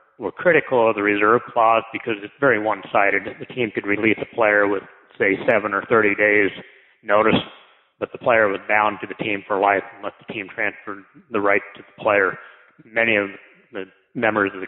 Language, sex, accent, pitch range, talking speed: English, male, American, 100-110 Hz, 195 wpm